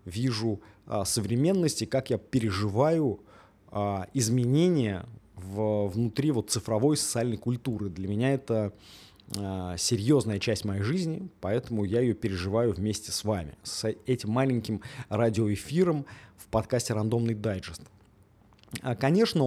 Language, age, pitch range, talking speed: Russian, 20-39, 105-135 Hz, 100 wpm